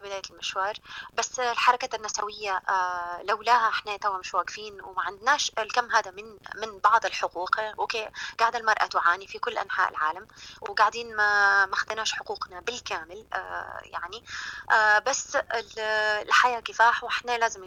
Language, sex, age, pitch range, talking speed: Arabic, female, 20-39, 205-255 Hz, 130 wpm